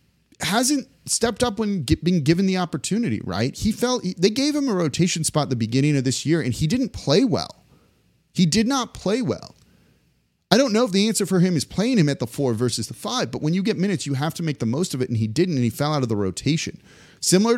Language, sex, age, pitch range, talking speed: English, male, 30-49, 125-165 Hz, 255 wpm